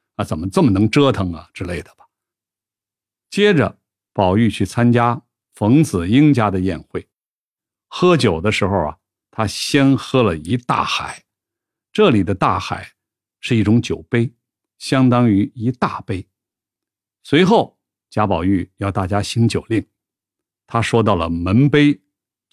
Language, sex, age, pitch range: Chinese, male, 50-69, 100-130 Hz